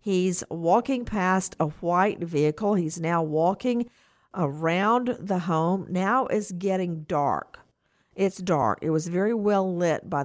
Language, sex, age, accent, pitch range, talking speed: English, female, 50-69, American, 165-215 Hz, 140 wpm